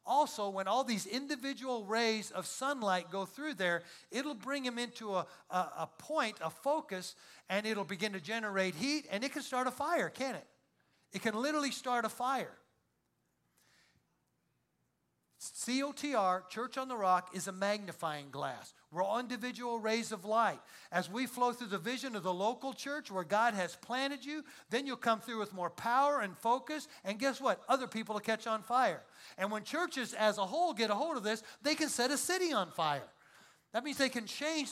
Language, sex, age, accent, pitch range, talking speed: English, male, 50-69, American, 195-265 Hz, 195 wpm